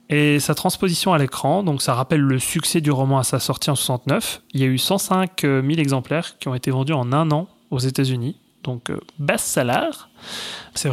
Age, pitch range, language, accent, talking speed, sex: 30-49, 130-160 Hz, French, French, 205 wpm, male